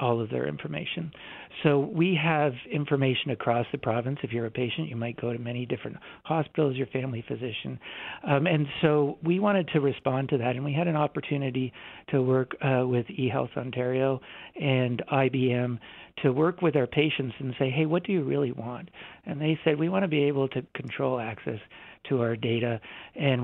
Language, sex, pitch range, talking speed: English, male, 125-150 Hz, 190 wpm